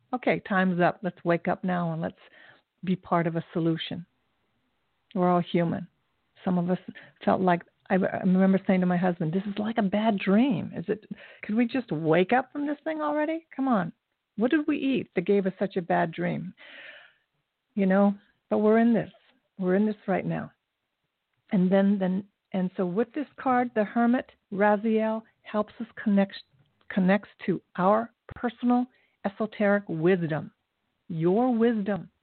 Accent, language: American, English